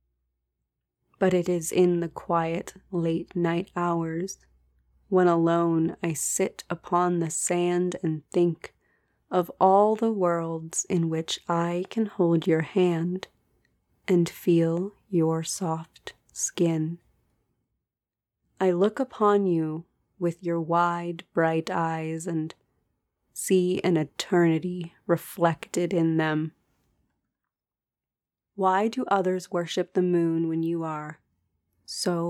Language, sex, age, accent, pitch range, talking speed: English, female, 30-49, American, 160-180 Hz, 110 wpm